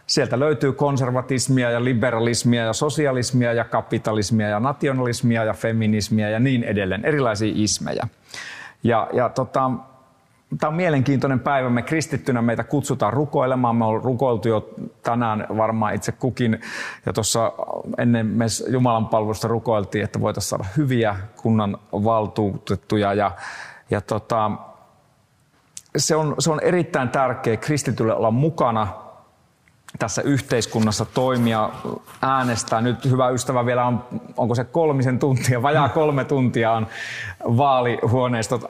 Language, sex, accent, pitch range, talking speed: Finnish, male, native, 110-135 Hz, 125 wpm